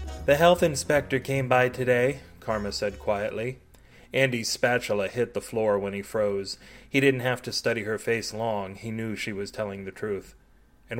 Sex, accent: male, American